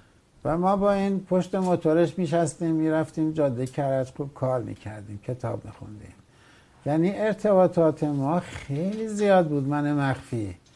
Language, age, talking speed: Persian, 60-79, 130 wpm